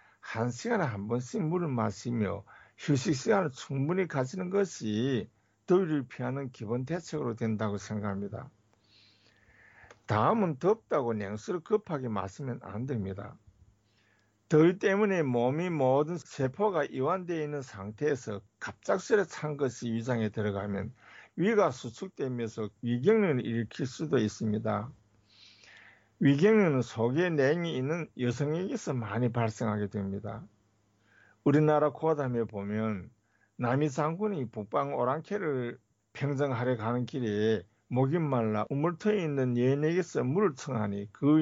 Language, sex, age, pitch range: Korean, male, 50-69, 110-150 Hz